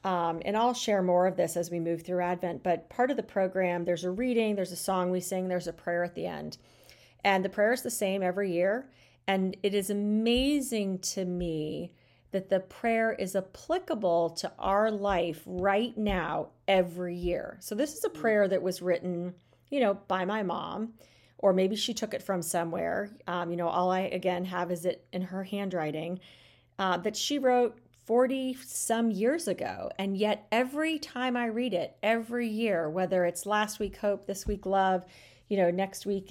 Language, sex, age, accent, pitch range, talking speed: English, female, 40-59, American, 175-215 Hz, 195 wpm